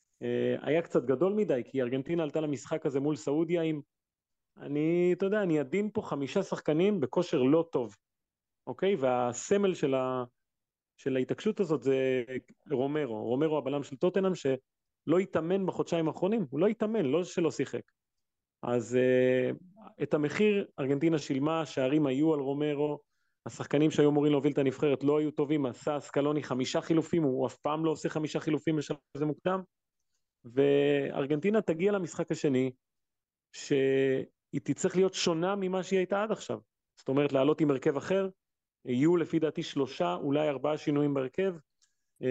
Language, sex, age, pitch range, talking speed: Hebrew, male, 30-49, 135-170 Hz, 140 wpm